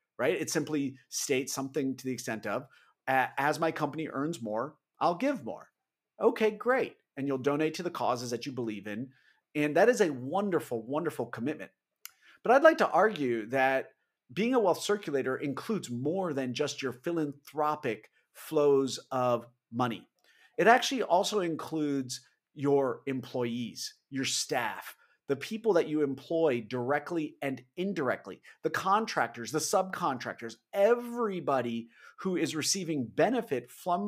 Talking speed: 145 wpm